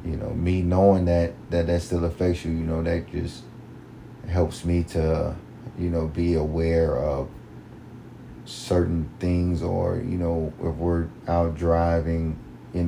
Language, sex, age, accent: English, male, 30-49, American